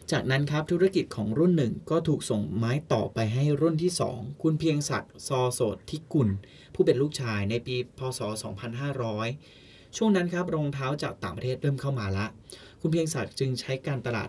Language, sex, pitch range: Thai, male, 115-150 Hz